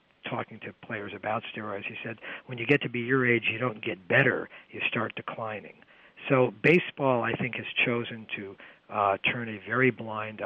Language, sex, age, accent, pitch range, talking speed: English, male, 50-69, American, 110-130 Hz, 190 wpm